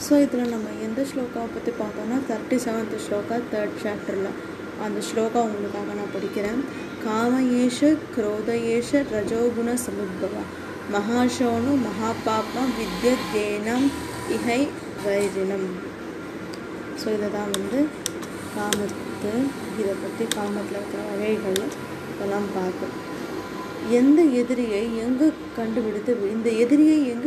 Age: 20-39